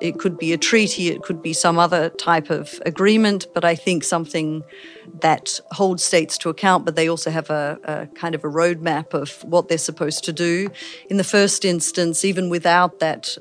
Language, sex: Filipino, female